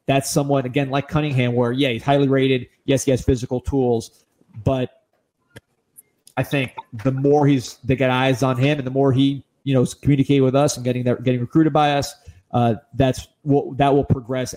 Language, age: English, 30-49